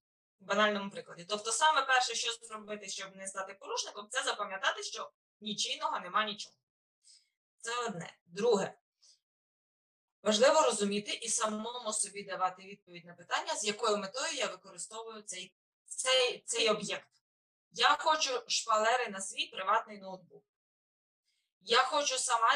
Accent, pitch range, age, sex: native, 195-245 Hz, 20-39, female